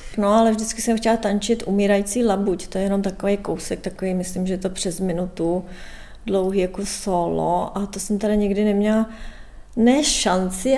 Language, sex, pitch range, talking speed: Czech, female, 180-210 Hz, 175 wpm